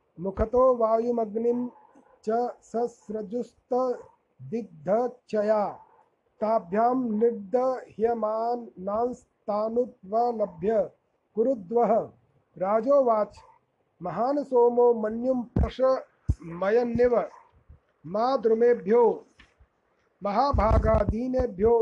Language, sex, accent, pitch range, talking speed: Hindi, male, native, 215-250 Hz, 40 wpm